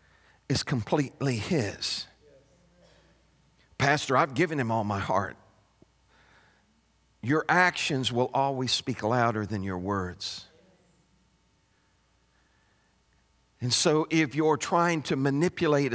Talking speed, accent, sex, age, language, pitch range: 100 wpm, American, male, 50-69, English, 135-215 Hz